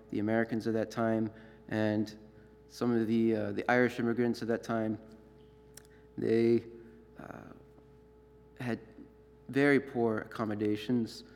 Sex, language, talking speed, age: male, English, 115 wpm, 30-49